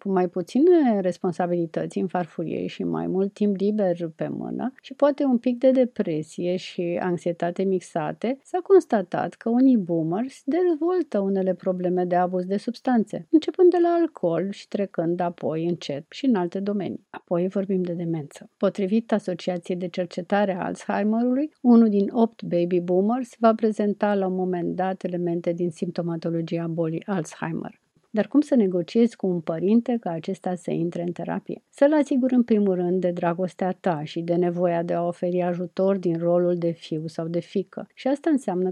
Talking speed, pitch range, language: 170 wpm, 175-210 Hz, Romanian